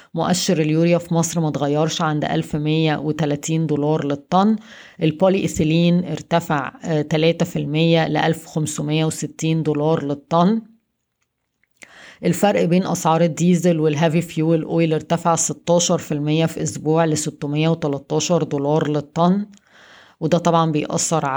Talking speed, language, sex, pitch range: 100 wpm, Arabic, female, 155-170 Hz